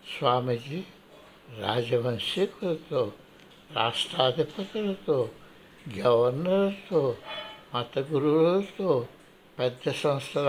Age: 60-79